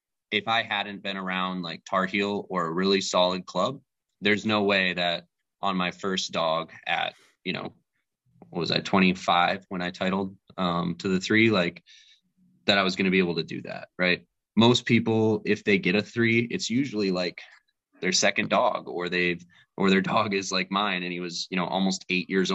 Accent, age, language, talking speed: American, 20-39, English, 200 wpm